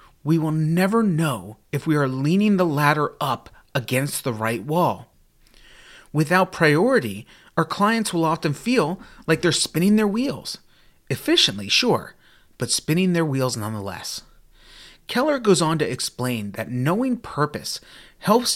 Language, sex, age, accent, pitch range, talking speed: English, male, 30-49, American, 125-185 Hz, 140 wpm